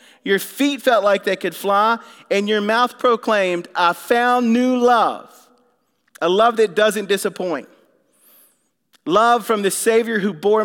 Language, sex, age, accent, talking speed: English, male, 40-59, American, 145 wpm